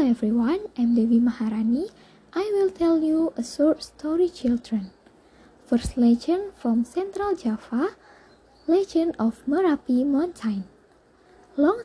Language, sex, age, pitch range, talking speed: English, female, 20-39, 235-350 Hz, 115 wpm